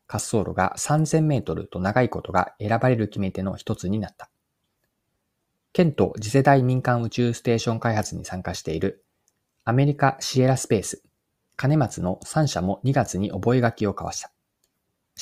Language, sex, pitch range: Japanese, male, 100-135 Hz